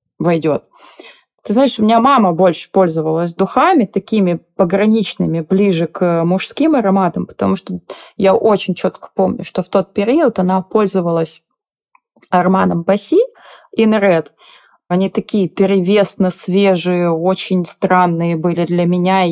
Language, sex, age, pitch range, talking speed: Russian, female, 20-39, 170-200 Hz, 120 wpm